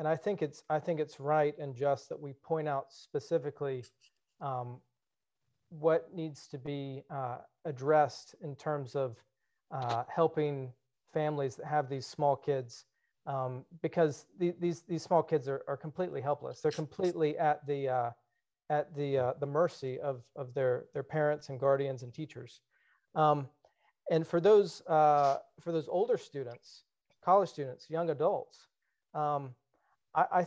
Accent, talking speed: American, 155 wpm